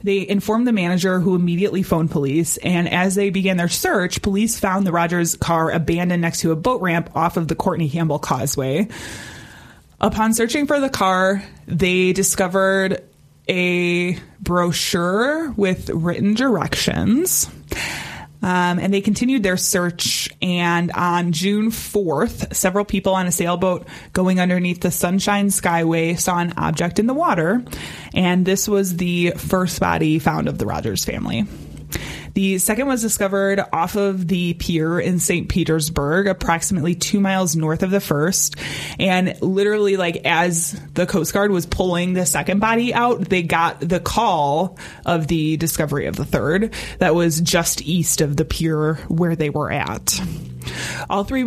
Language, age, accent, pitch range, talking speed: English, 20-39, American, 165-195 Hz, 155 wpm